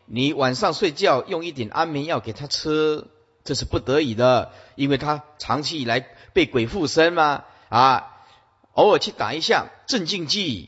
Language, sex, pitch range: Chinese, male, 105-150 Hz